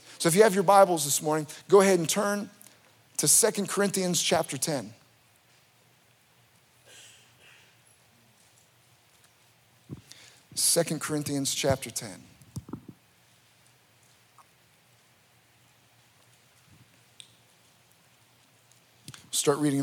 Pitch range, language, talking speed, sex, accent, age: 135-170 Hz, English, 70 wpm, male, American, 50-69